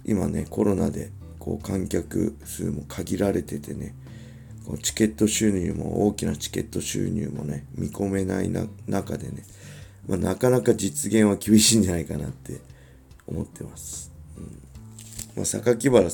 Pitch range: 75-110 Hz